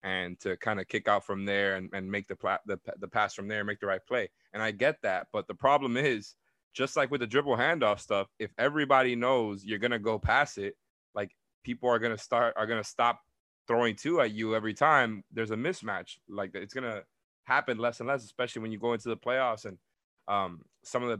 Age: 20-39